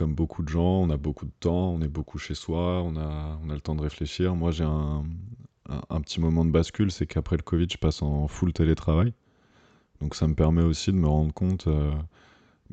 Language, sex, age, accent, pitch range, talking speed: French, male, 20-39, French, 75-90 Hz, 235 wpm